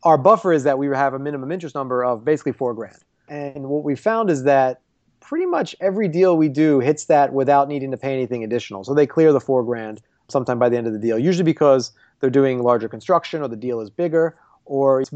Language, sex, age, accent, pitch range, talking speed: English, male, 30-49, American, 125-150 Hz, 240 wpm